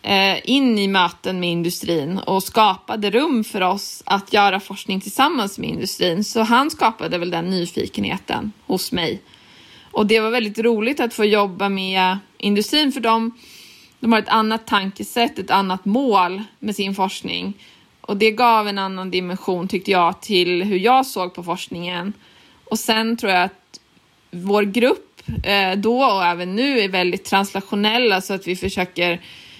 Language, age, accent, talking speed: Swedish, 20-39, native, 160 wpm